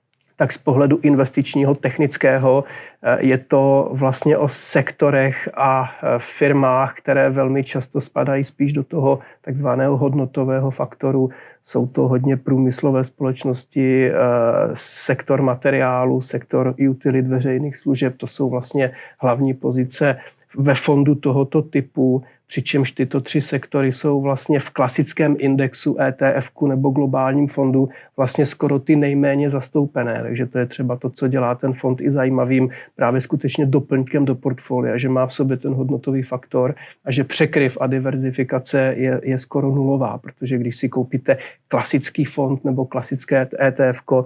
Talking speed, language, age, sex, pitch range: 140 wpm, Czech, 40-59, male, 130-140 Hz